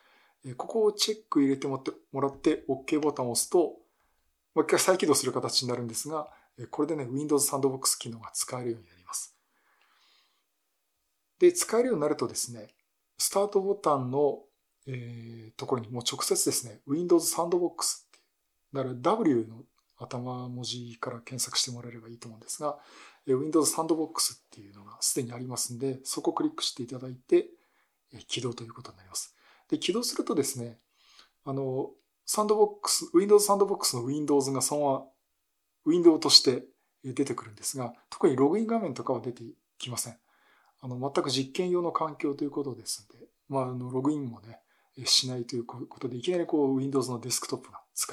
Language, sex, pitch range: Japanese, male, 125-170 Hz